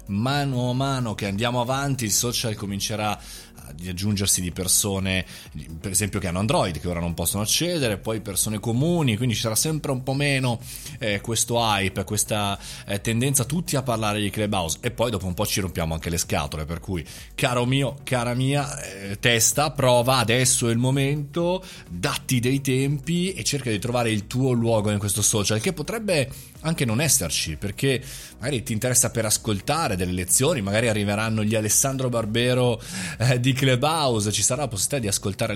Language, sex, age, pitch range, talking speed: Italian, male, 30-49, 105-140 Hz, 180 wpm